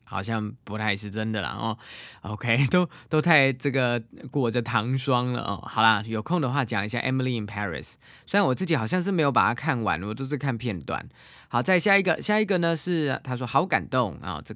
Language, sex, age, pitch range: Chinese, male, 20-39, 110-140 Hz